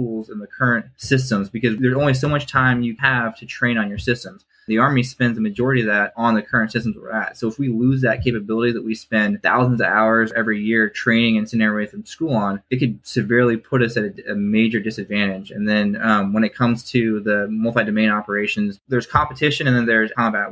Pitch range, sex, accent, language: 110-125 Hz, male, American, English